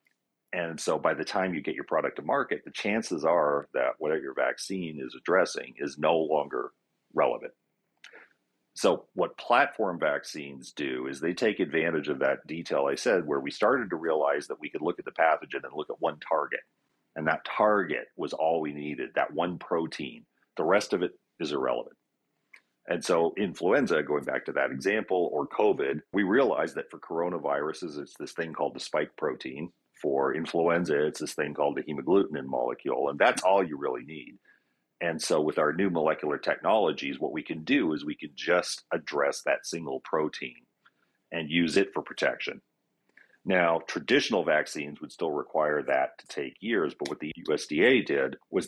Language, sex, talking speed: English, male, 180 wpm